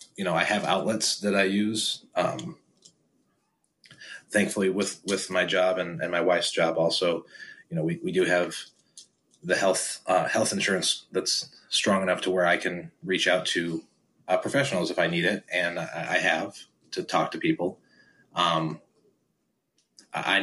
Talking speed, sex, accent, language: 165 wpm, male, American, English